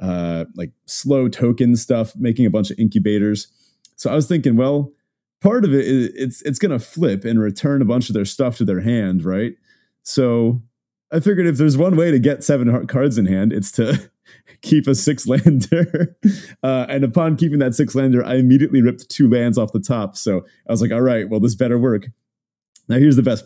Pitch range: 105-145 Hz